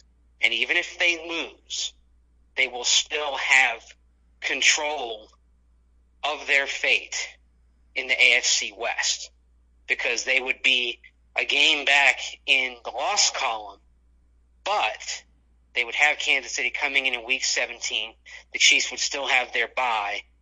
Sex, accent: male, American